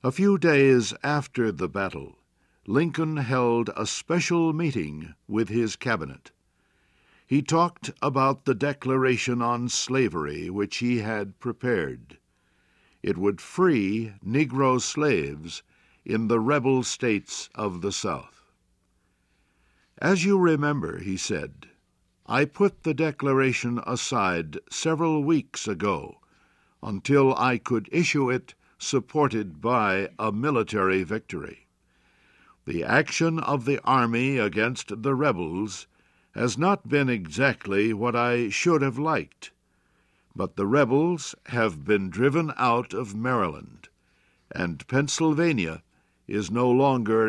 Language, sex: English, male